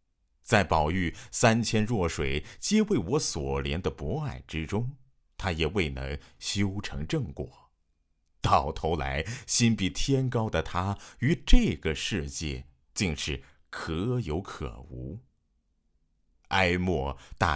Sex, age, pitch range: male, 50-69, 70-90 Hz